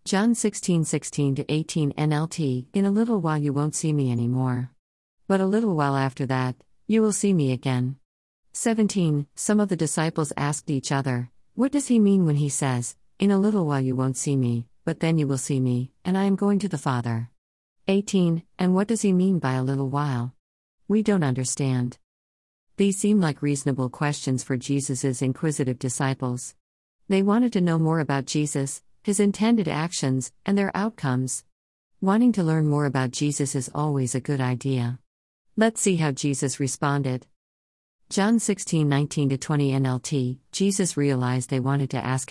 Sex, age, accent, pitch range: female, 50-69, American, 130-175 Hz